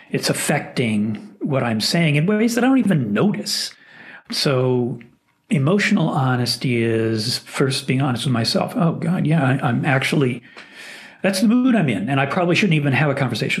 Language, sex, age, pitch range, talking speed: English, male, 40-59, 115-150 Hz, 170 wpm